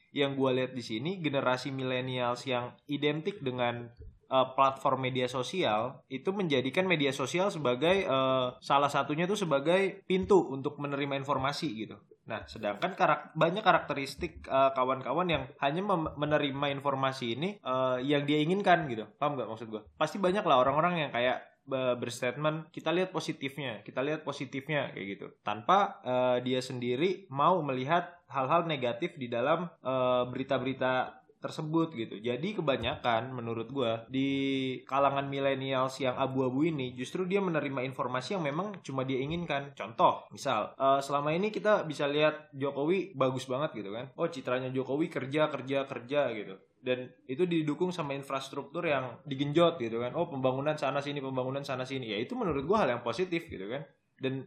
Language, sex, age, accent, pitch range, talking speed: Indonesian, male, 20-39, native, 130-160 Hz, 160 wpm